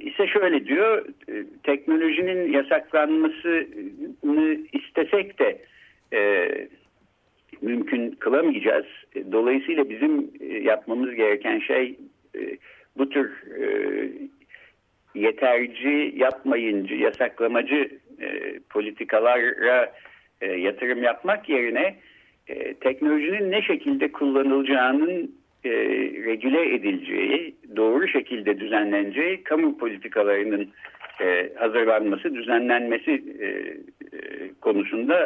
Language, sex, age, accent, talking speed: Turkish, male, 60-79, native, 80 wpm